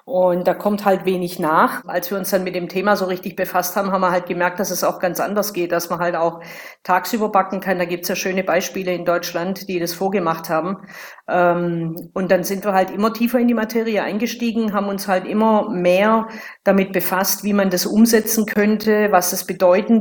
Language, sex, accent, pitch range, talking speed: German, female, German, 180-215 Hz, 220 wpm